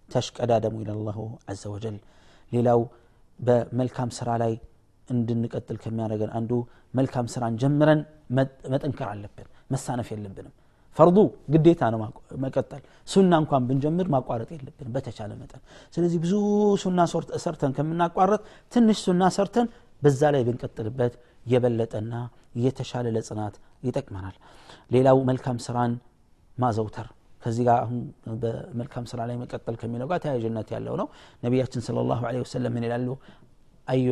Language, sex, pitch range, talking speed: Amharic, male, 115-140 Hz, 115 wpm